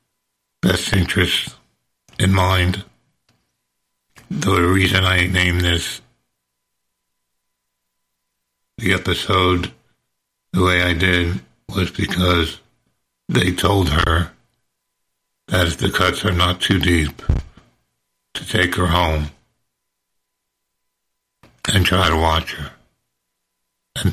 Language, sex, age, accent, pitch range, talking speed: English, male, 60-79, American, 80-95 Hz, 95 wpm